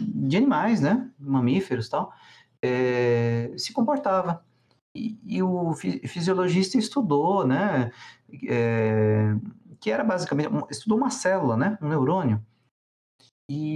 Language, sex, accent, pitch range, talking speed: Portuguese, male, Brazilian, 120-200 Hz, 115 wpm